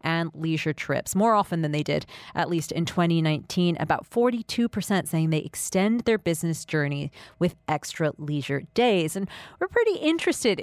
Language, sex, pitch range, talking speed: English, female, 165-210 Hz, 160 wpm